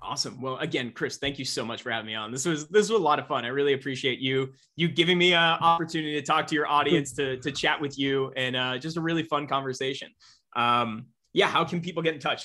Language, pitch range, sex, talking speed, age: English, 120-150 Hz, male, 260 wpm, 20-39